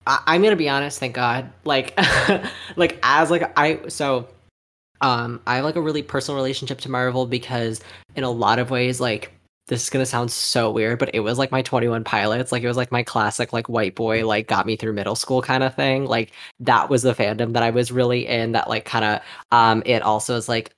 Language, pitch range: English, 110-135 Hz